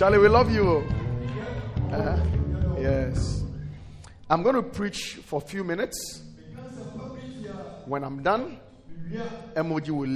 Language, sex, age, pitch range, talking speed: English, male, 40-59, 120-185 Hz, 110 wpm